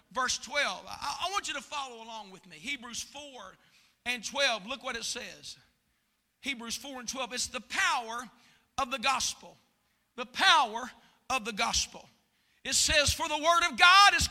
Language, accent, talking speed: English, American, 170 wpm